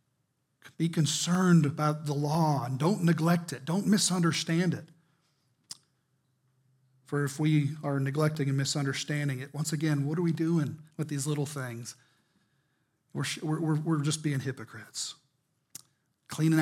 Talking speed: 135 wpm